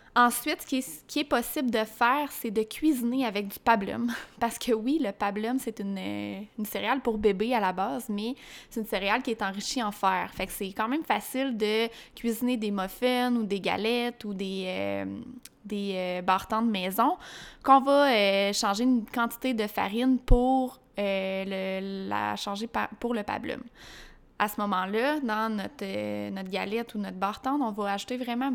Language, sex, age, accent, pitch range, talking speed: French, female, 20-39, Canadian, 205-250 Hz, 190 wpm